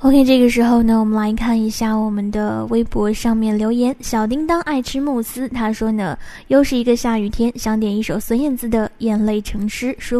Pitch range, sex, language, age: 215-255 Hz, female, Chinese, 10-29